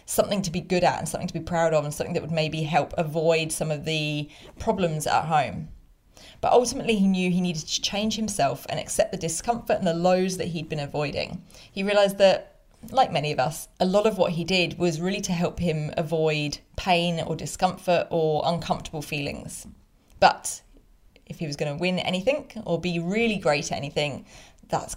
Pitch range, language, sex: 165-205 Hz, English, female